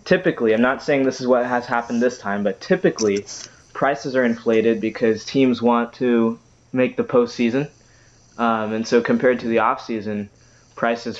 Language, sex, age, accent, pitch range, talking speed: English, male, 20-39, American, 110-120 Hz, 165 wpm